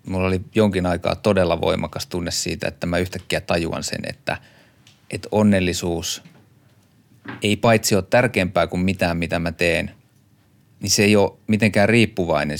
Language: Finnish